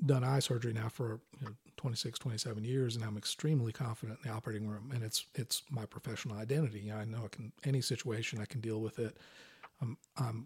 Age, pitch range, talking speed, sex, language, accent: 40-59, 115-145 Hz, 210 wpm, male, English, American